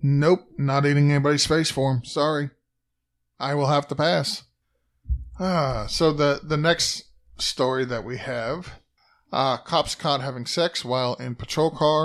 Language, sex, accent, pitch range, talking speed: English, male, American, 125-150 Hz, 155 wpm